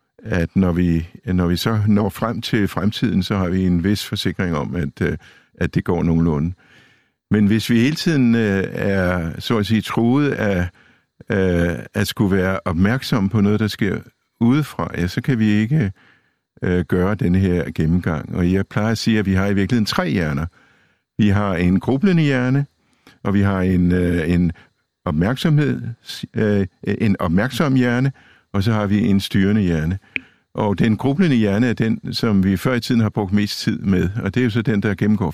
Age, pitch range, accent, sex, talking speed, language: 60-79, 95-120 Hz, native, male, 185 wpm, Danish